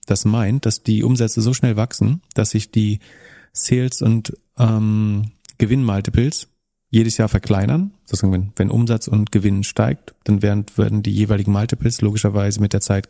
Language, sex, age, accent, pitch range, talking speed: German, male, 30-49, German, 105-125 Hz, 165 wpm